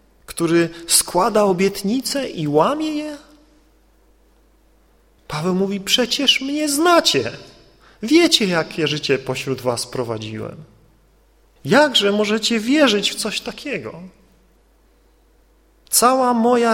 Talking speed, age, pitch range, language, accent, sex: 90 wpm, 40-59, 140-200 Hz, Polish, native, male